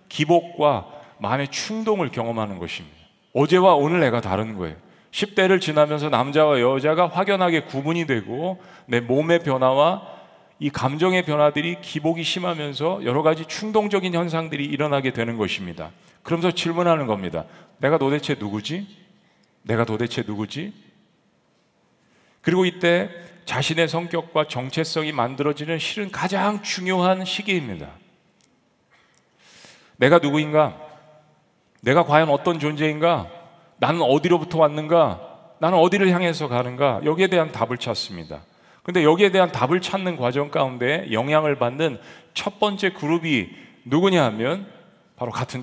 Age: 40-59